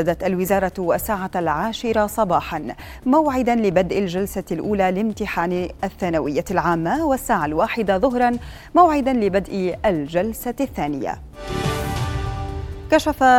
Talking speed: 90 wpm